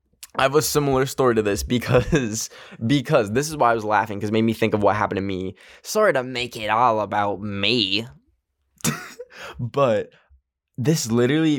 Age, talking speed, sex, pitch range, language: 10-29, 175 wpm, male, 100-125 Hz, English